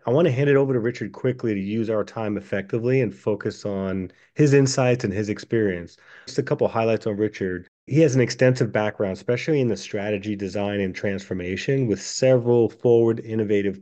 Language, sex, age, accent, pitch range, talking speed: English, male, 30-49, American, 100-125 Hz, 195 wpm